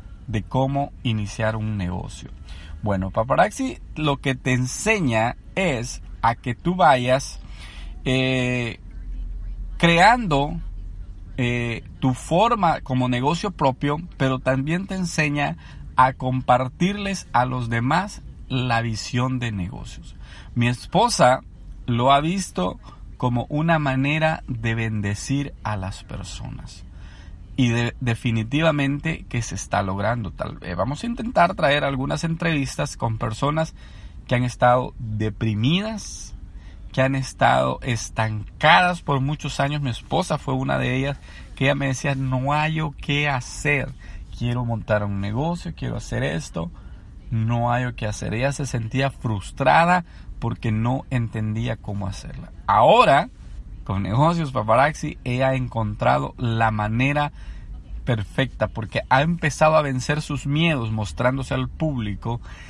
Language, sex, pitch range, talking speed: Spanish, male, 105-145 Hz, 125 wpm